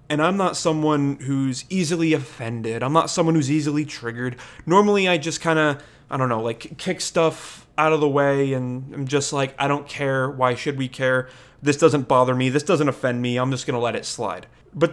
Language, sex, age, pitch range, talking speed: English, male, 20-39, 135-180 Hz, 220 wpm